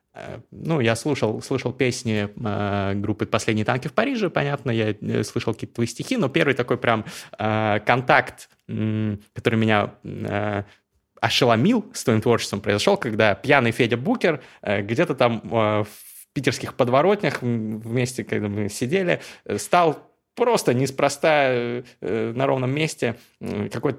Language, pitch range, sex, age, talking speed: Russian, 105-130 Hz, male, 20-39, 125 wpm